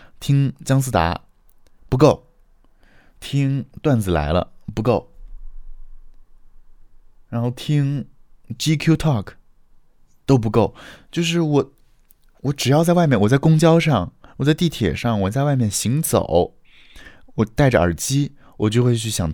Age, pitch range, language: 20-39, 85-135 Hz, Chinese